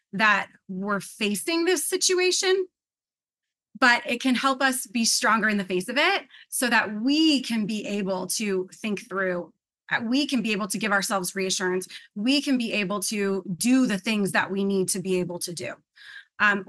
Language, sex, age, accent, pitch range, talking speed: English, female, 30-49, American, 195-260 Hz, 185 wpm